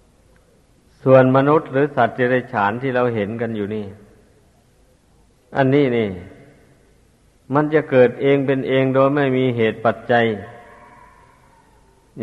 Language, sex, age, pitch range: Thai, male, 50-69, 110-125 Hz